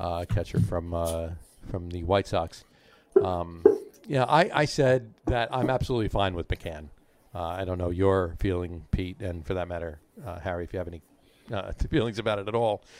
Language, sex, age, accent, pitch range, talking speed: English, male, 50-69, American, 95-115 Hz, 195 wpm